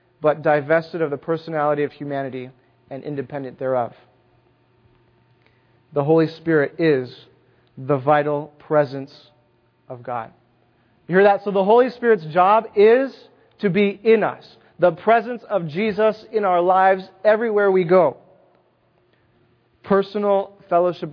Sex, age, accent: male, 30-49, American